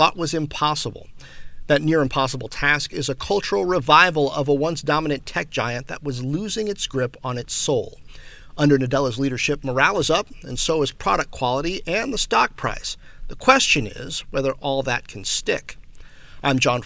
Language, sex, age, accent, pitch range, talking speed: English, male, 40-59, American, 130-165 Hz, 170 wpm